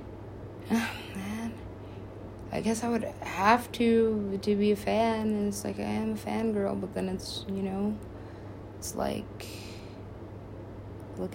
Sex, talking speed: female, 135 wpm